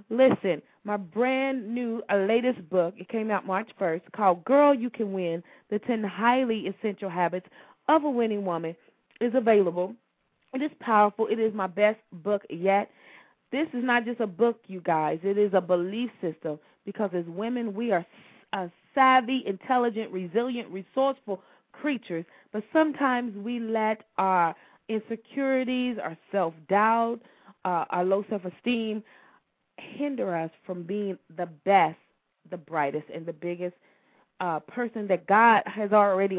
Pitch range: 185-240 Hz